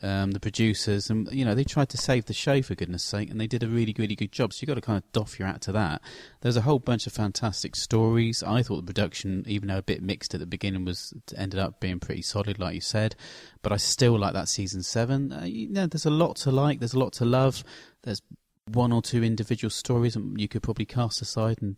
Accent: British